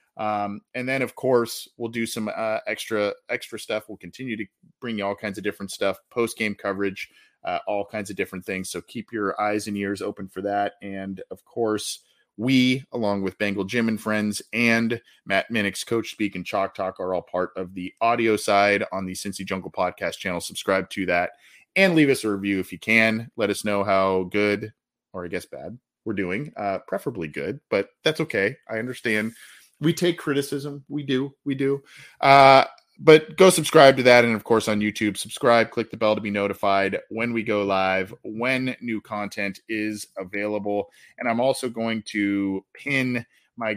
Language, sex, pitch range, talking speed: English, male, 100-120 Hz, 195 wpm